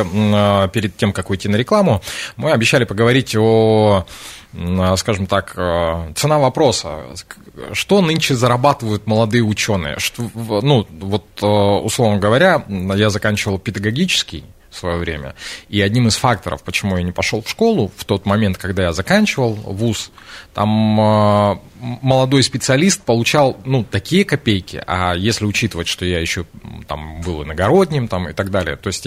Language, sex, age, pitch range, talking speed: Russian, male, 20-39, 95-125 Hz, 140 wpm